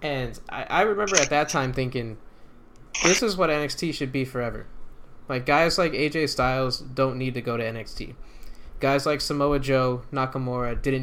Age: 20-39